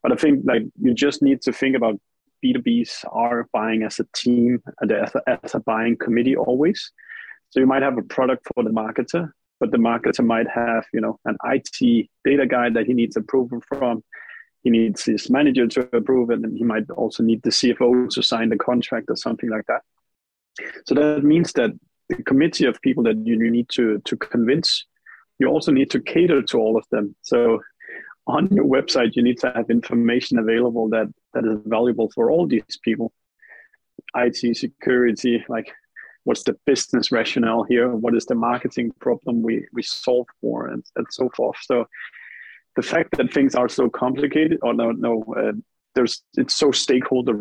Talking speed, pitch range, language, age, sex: 190 wpm, 115-145 Hz, English, 20-39, male